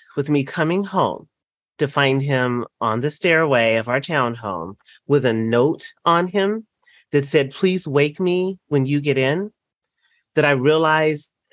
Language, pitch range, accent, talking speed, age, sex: English, 140-195 Hz, American, 160 wpm, 30-49, male